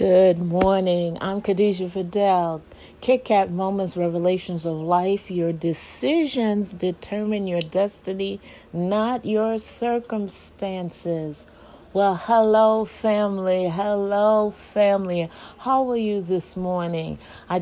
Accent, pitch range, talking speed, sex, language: American, 180-220 Hz, 100 wpm, female, English